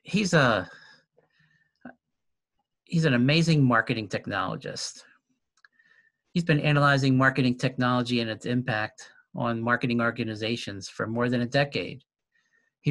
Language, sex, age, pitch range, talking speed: English, male, 50-69, 120-155 Hz, 110 wpm